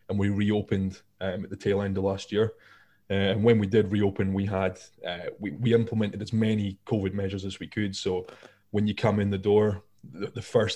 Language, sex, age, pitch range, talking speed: English, male, 20-39, 100-110 Hz, 225 wpm